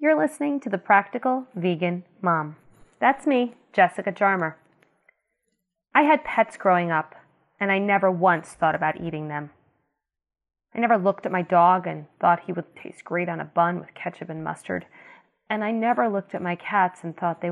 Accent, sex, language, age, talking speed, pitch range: American, female, English, 30-49, 180 wpm, 170-225 Hz